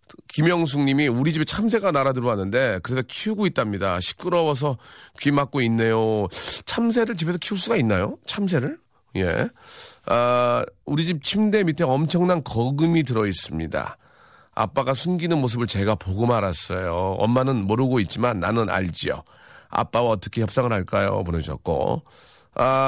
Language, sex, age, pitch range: Korean, male, 40-59, 105-165 Hz